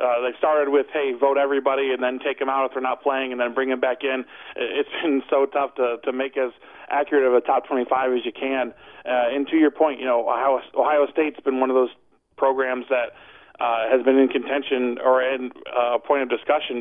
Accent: American